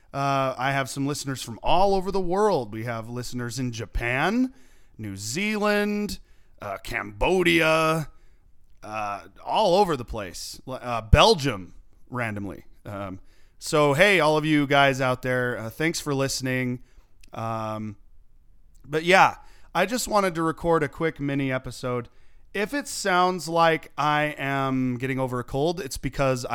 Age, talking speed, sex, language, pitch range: 30-49, 145 wpm, male, English, 120-160 Hz